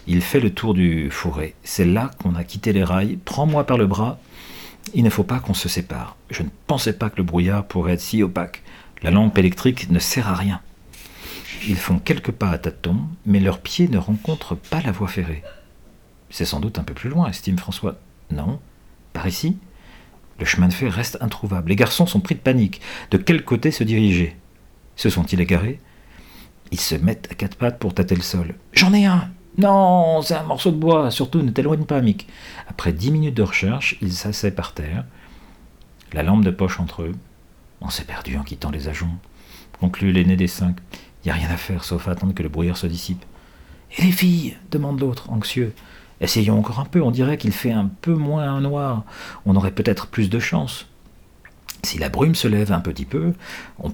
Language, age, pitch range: French, 50-69, 90-130 Hz